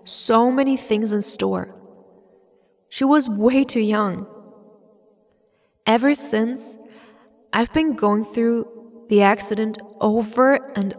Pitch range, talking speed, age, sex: 185-225 Hz, 110 wpm, 20-39, female